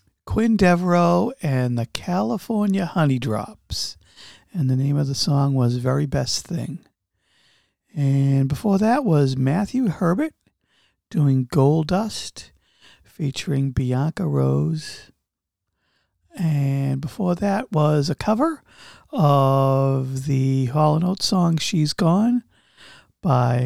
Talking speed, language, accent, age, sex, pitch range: 105 wpm, English, American, 50-69, male, 125-175 Hz